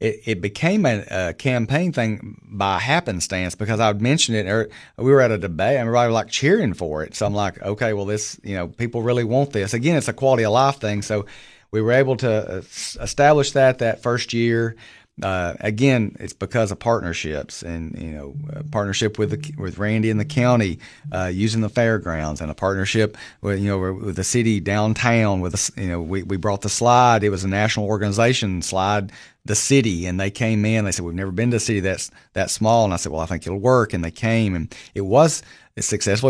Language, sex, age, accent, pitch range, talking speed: English, male, 40-59, American, 95-120 Hz, 225 wpm